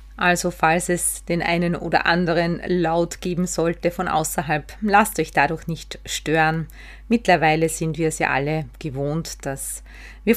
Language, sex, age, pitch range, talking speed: German, female, 30-49, 155-190 Hz, 150 wpm